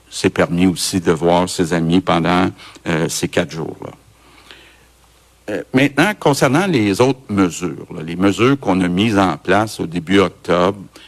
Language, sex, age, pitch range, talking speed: French, male, 60-79, 90-105 Hz, 155 wpm